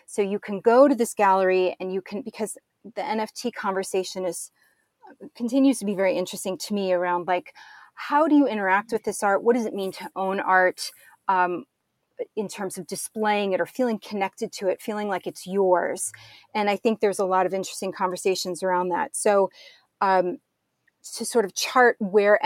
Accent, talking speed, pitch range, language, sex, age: American, 190 wpm, 190-235 Hz, English, female, 30-49